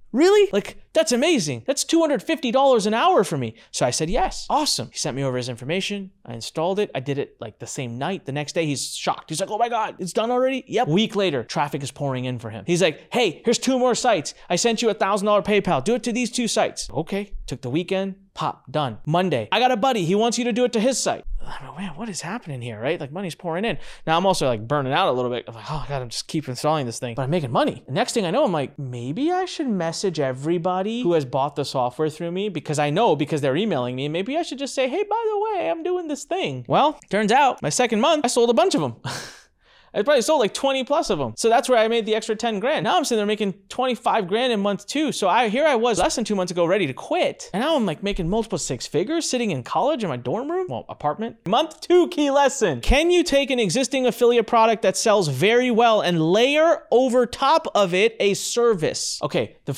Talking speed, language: 260 wpm, English